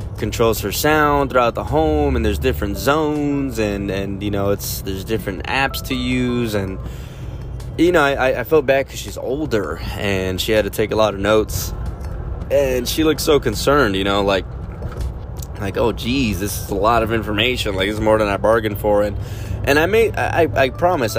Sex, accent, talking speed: male, American, 200 wpm